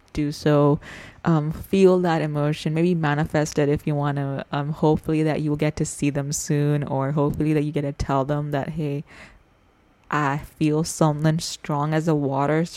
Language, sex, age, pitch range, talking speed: English, female, 20-39, 145-165 Hz, 190 wpm